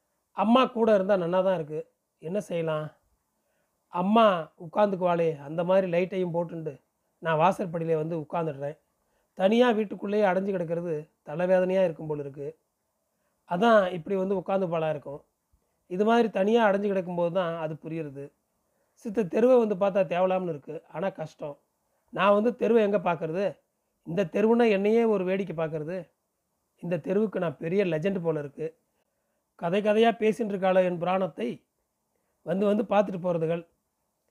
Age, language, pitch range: 30-49, Tamil, 165-205 Hz